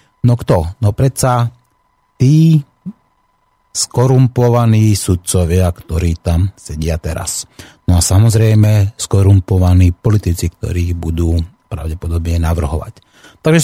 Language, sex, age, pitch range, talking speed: Slovak, male, 30-49, 90-125 Hz, 95 wpm